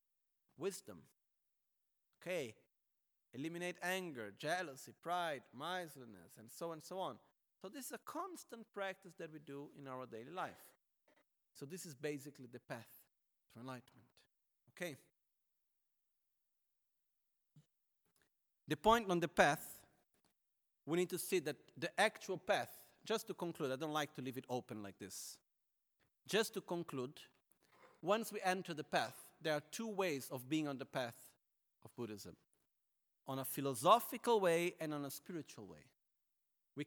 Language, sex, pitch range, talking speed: Italian, male, 145-200 Hz, 145 wpm